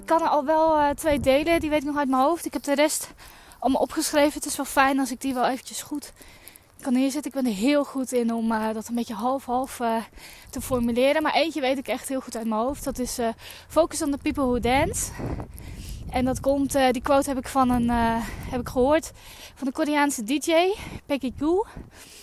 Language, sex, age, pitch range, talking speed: Dutch, female, 20-39, 245-300 Hz, 210 wpm